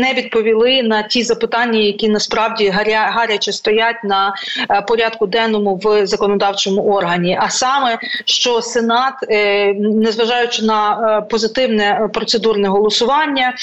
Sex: female